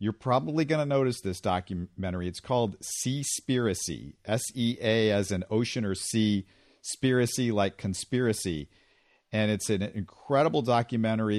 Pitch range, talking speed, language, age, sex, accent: 95-120 Hz, 125 wpm, English, 50-69, male, American